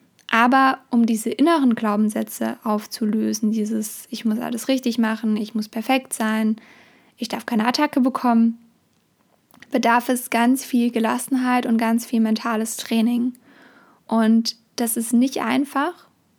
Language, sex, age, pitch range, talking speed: German, female, 20-39, 225-250 Hz, 130 wpm